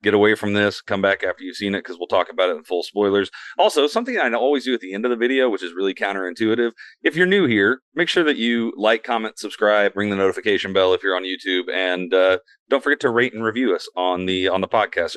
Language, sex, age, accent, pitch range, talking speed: English, male, 30-49, American, 100-125 Hz, 260 wpm